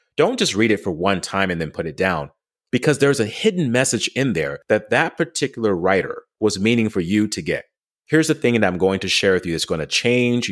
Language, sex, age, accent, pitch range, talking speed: English, male, 30-49, American, 95-120 Hz, 245 wpm